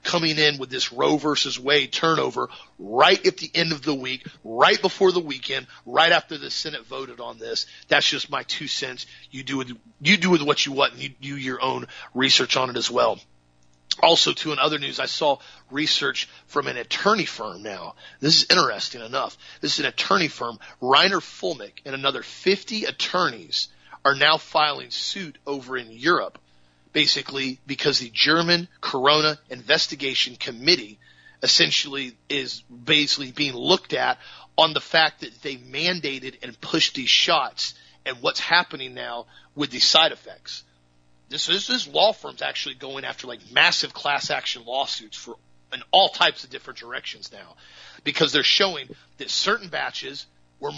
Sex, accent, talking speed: male, American, 170 wpm